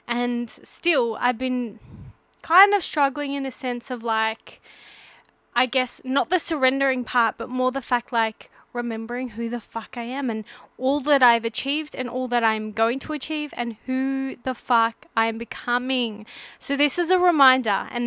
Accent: Australian